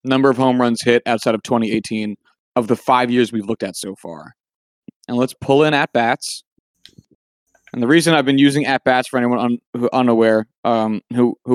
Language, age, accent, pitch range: English, 30-49, American, 110-135 Hz